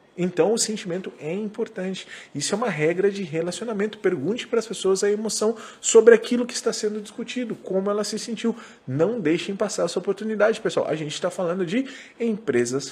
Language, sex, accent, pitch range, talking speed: Portuguese, male, Brazilian, 155-215 Hz, 180 wpm